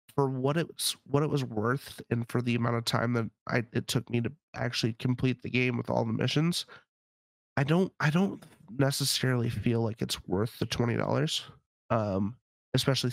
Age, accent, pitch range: 30-49, American, 115-130 Hz